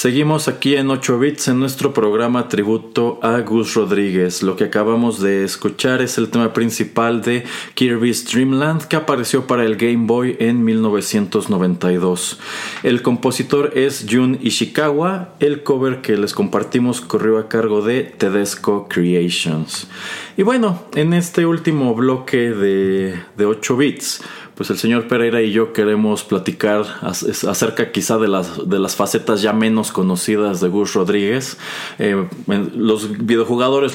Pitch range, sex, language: 105-135 Hz, male, Spanish